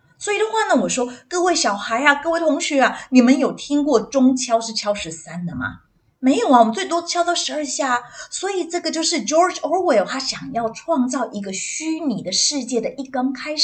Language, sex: Chinese, female